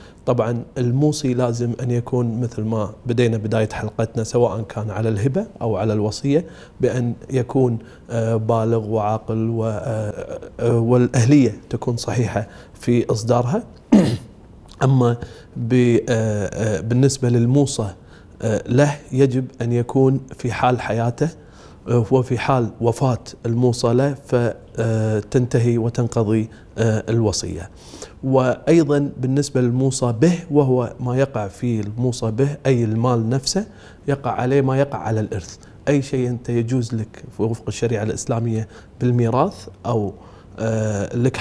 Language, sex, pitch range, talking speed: English, male, 110-130 Hz, 110 wpm